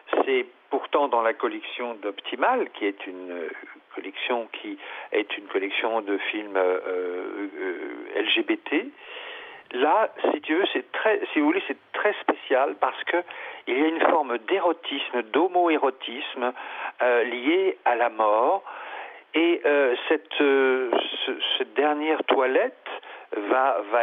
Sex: male